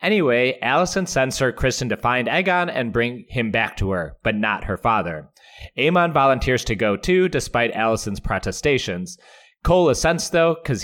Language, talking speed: English, 165 wpm